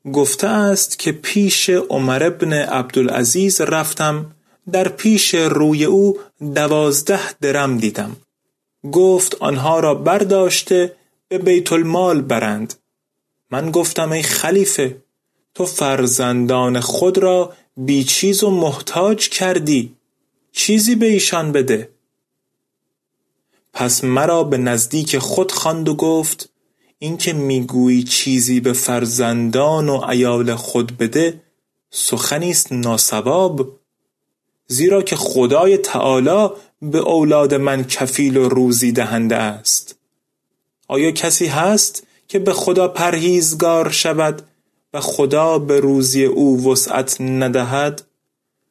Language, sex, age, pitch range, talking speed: Persian, male, 30-49, 130-180 Hz, 105 wpm